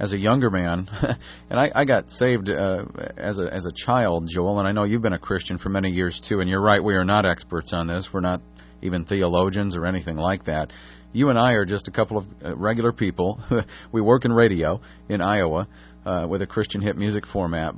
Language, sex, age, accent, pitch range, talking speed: English, male, 40-59, American, 95-115 Hz, 225 wpm